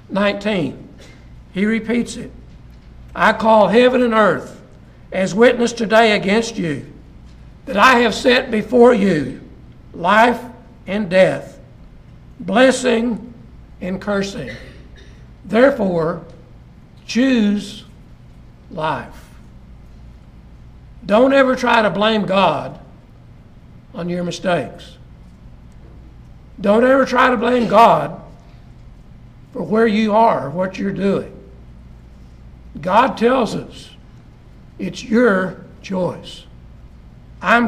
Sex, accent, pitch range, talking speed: male, American, 165-235 Hz, 90 wpm